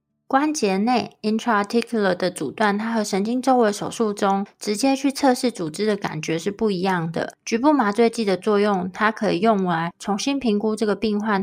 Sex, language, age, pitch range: female, Chinese, 20-39, 185-230 Hz